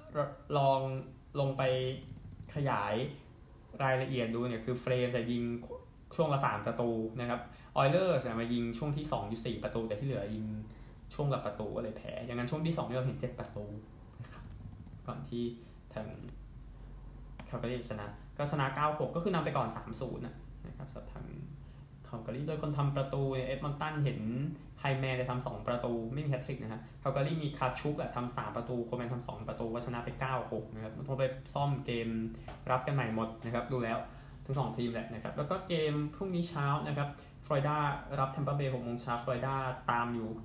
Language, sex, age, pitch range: Thai, male, 20-39, 120-140 Hz